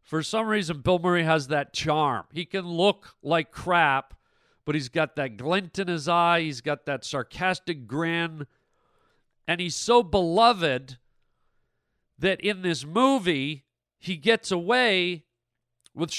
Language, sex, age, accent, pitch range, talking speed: English, male, 40-59, American, 150-200 Hz, 140 wpm